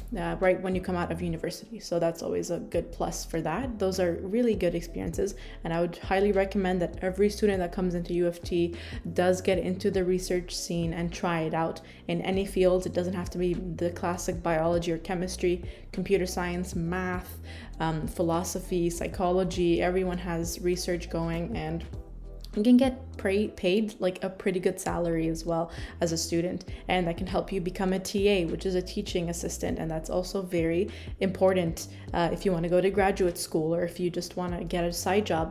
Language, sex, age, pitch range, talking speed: English, female, 20-39, 170-190 Hz, 200 wpm